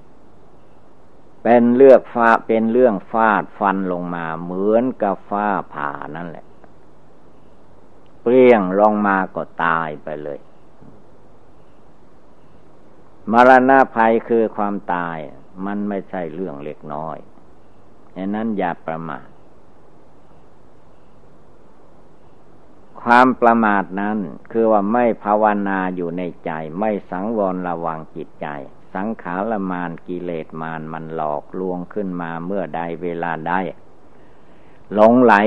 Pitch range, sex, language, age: 85-105 Hz, male, Thai, 60-79